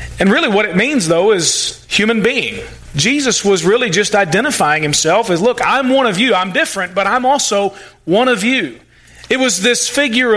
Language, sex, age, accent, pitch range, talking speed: English, male, 40-59, American, 180-240 Hz, 190 wpm